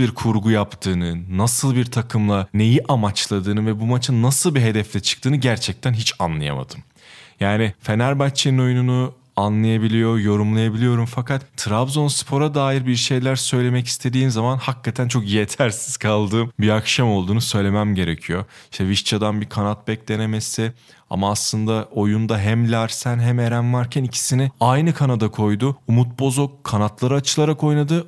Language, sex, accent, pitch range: Turkish, male, native, 105-130 Hz